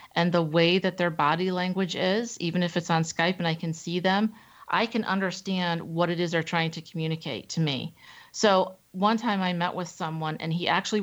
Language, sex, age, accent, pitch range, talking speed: English, female, 40-59, American, 165-200 Hz, 220 wpm